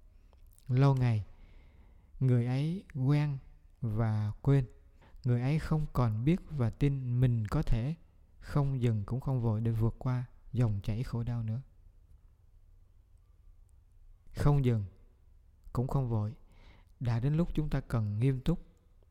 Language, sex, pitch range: Vietnamese, male, 95-135 Hz